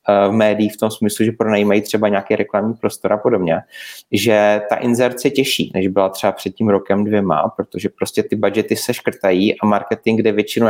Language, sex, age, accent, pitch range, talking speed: Czech, male, 30-49, native, 105-115 Hz, 190 wpm